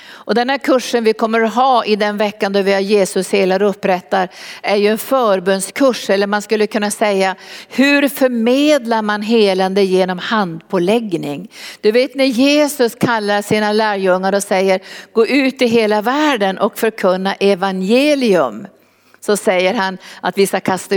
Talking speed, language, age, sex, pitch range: 160 wpm, Swedish, 50-69, female, 195-240 Hz